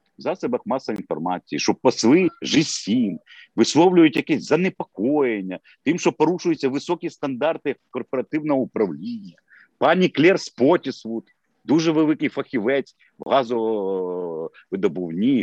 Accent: native